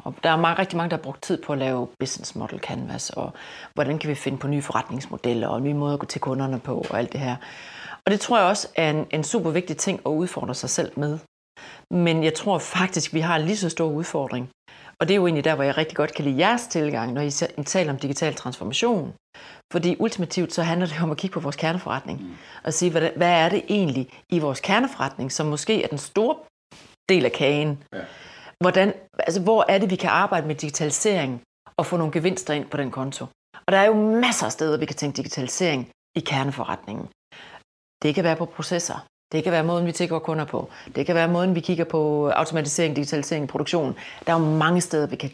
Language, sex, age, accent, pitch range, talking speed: Danish, female, 40-59, native, 145-180 Hz, 230 wpm